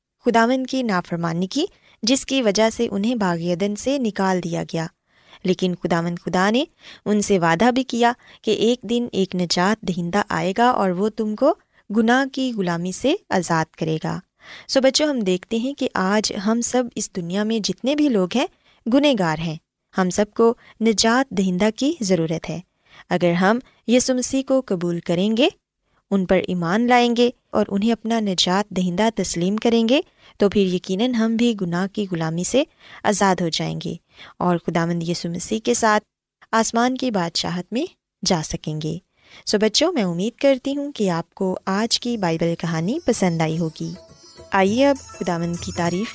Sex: female